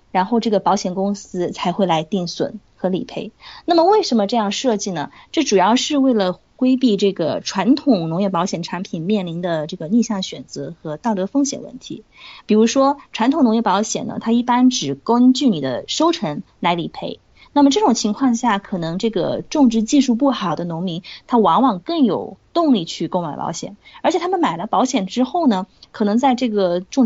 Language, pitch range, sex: Chinese, 185-255 Hz, female